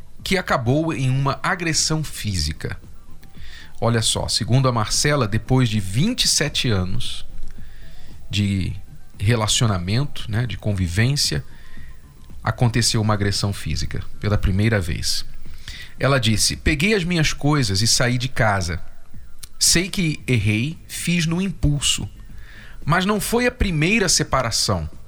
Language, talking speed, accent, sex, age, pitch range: Portuguese, 115 wpm, Brazilian, male, 40-59, 105-150 Hz